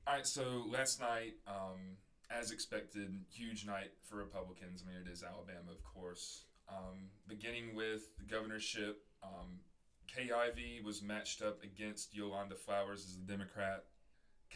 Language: English